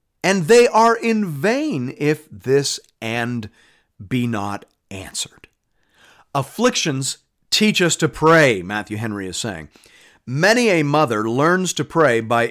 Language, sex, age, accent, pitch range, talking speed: English, male, 40-59, American, 120-165 Hz, 130 wpm